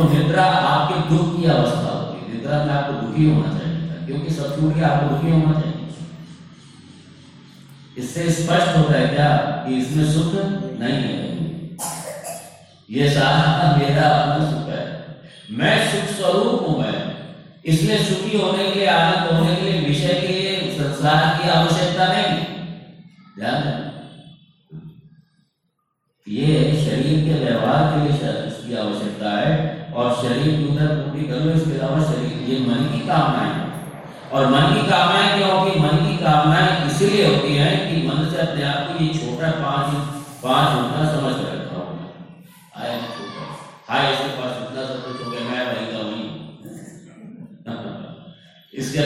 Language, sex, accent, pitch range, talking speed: Hindi, male, native, 140-170 Hz, 95 wpm